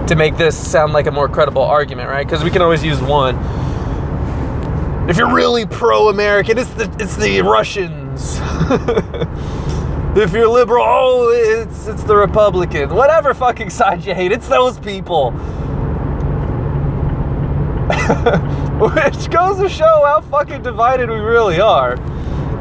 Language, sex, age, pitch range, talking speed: English, male, 20-39, 140-230 Hz, 135 wpm